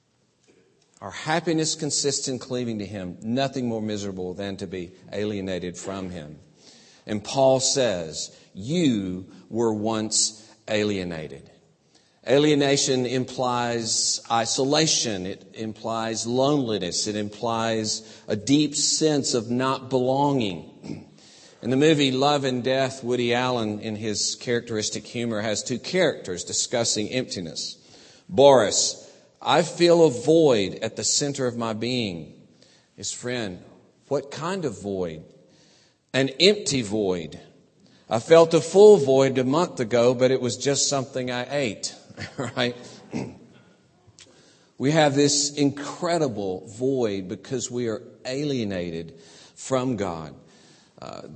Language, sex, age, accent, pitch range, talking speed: English, male, 50-69, American, 105-135 Hz, 120 wpm